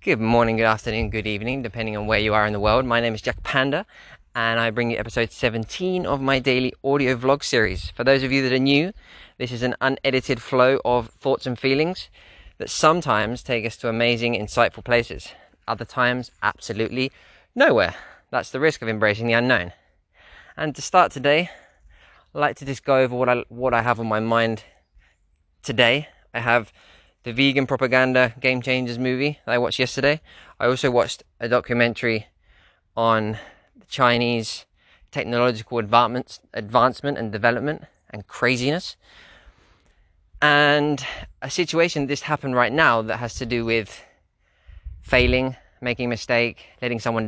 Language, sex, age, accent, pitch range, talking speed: English, male, 20-39, British, 110-130 Hz, 165 wpm